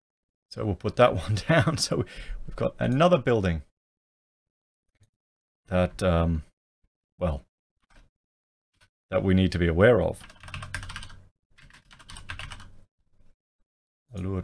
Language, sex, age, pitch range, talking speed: English, male, 30-49, 85-105 Hz, 90 wpm